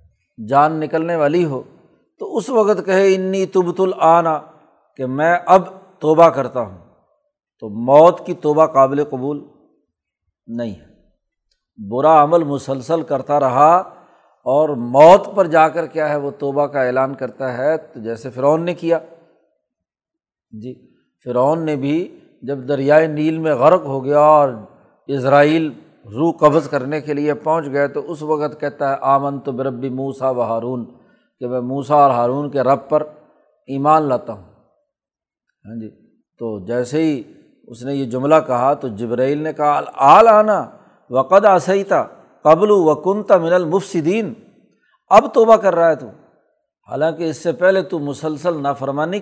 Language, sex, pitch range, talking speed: Urdu, male, 135-170 Hz, 150 wpm